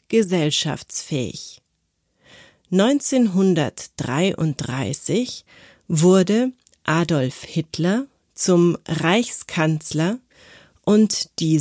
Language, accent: German, German